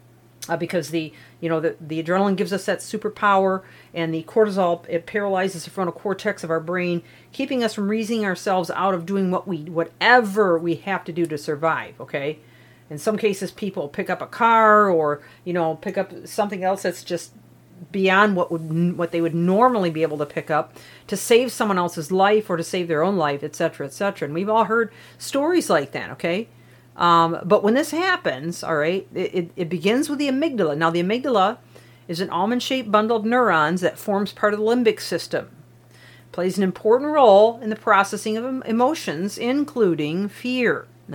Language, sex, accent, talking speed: English, female, American, 195 wpm